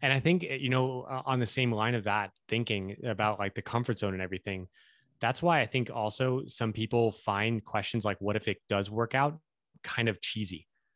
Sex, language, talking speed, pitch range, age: male, English, 215 wpm, 100-120 Hz, 20-39